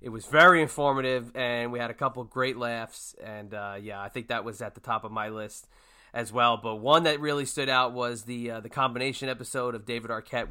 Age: 20-39